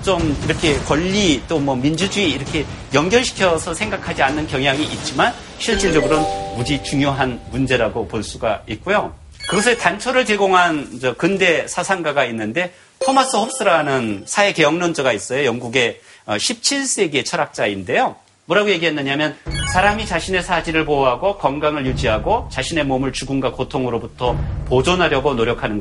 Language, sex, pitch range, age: Korean, male, 120-180 Hz, 40-59